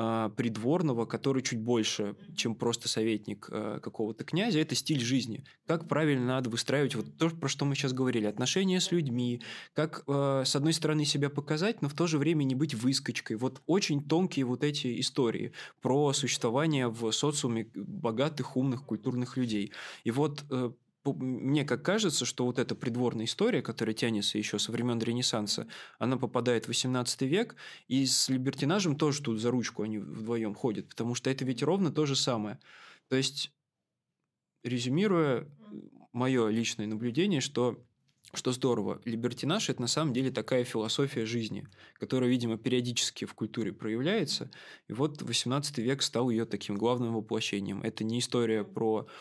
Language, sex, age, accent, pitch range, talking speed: Russian, male, 20-39, native, 115-140 Hz, 155 wpm